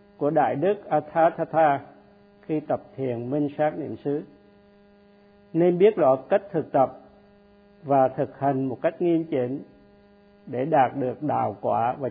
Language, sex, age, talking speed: Vietnamese, male, 50-69, 160 wpm